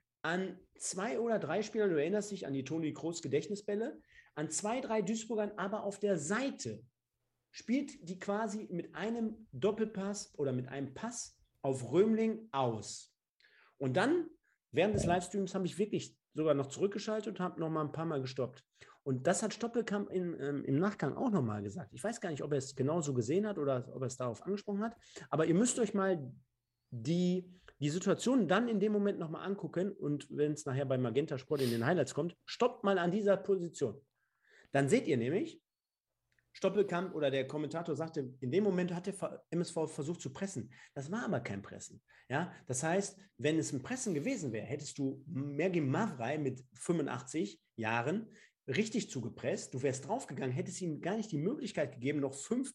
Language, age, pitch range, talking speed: German, 40-59, 140-205 Hz, 190 wpm